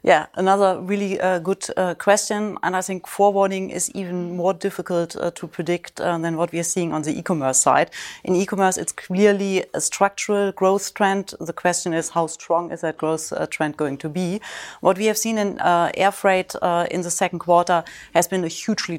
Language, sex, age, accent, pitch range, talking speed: English, female, 30-49, German, 170-195 Hz, 210 wpm